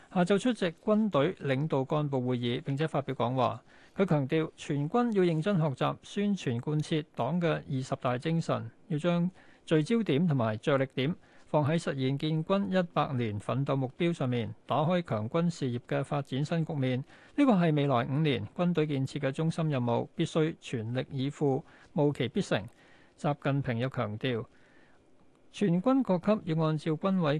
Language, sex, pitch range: Chinese, male, 130-170 Hz